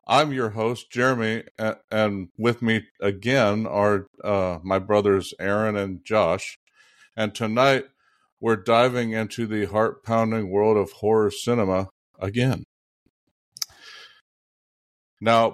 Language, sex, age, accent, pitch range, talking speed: English, male, 50-69, American, 105-120 Hz, 110 wpm